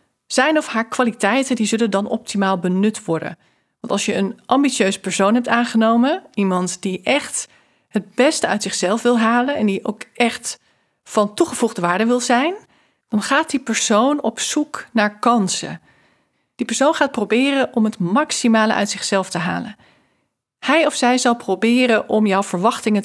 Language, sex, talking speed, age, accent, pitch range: Dutch, female, 165 wpm, 40-59, Dutch, 195-245 Hz